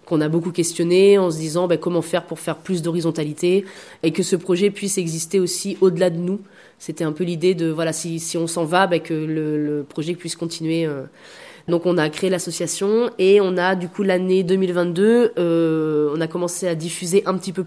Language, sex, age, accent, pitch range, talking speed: French, female, 20-39, French, 165-200 Hz, 215 wpm